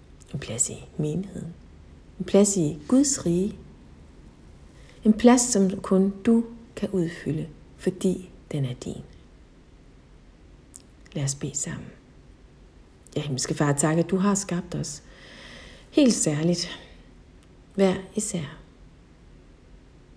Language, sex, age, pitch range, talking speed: Danish, female, 60-79, 160-200 Hz, 115 wpm